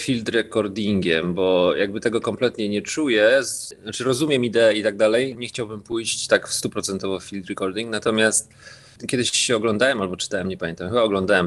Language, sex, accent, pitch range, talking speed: Polish, male, native, 95-115 Hz, 180 wpm